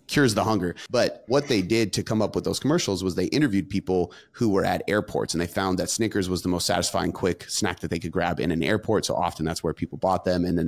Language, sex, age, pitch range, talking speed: English, male, 30-49, 85-105 Hz, 270 wpm